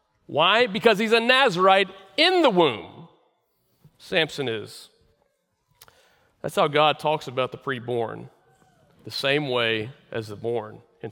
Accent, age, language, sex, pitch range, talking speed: American, 40-59, English, male, 140-180 Hz, 130 wpm